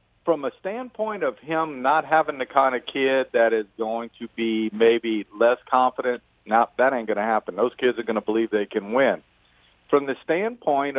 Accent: American